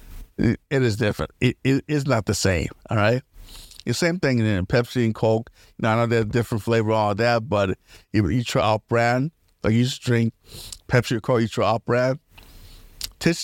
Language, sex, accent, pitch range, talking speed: English, male, American, 95-130 Hz, 200 wpm